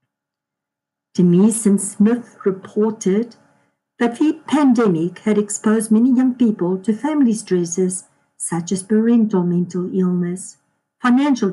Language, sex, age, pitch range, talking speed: English, female, 60-79, 180-235 Hz, 110 wpm